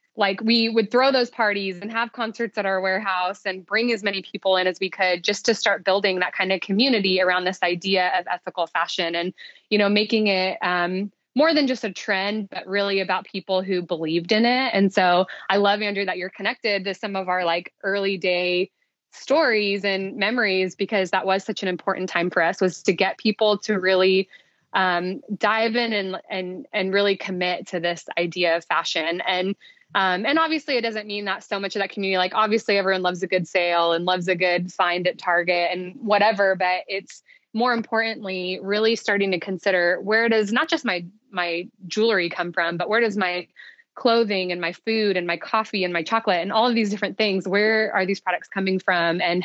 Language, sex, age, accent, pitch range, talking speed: English, female, 20-39, American, 180-220 Hz, 210 wpm